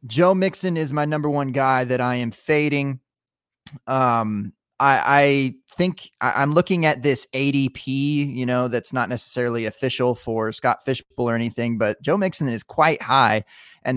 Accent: American